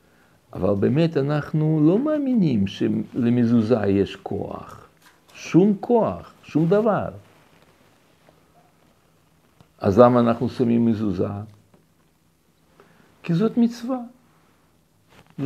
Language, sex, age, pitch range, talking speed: Hebrew, male, 60-79, 105-165 Hz, 80 wpm